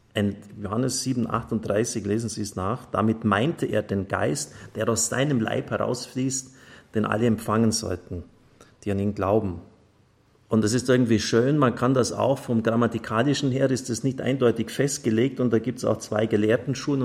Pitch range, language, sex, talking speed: 110-130 Hz, German, male, 180 wpm